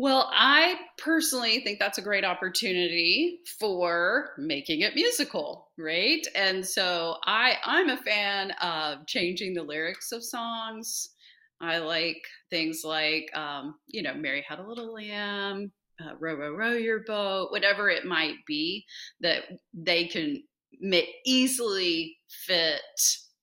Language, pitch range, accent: English, 165-260 Hz, American